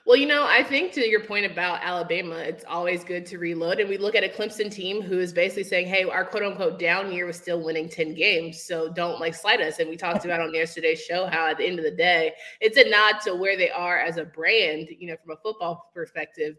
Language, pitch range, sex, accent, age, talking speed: English, 170-265 Hz, female, American, 20-39, 255 wpm